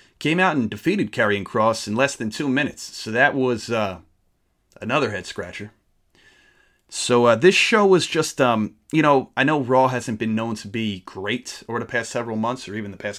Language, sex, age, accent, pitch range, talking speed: English, male, 30-49, American, 100-125 Hz, 200 wpm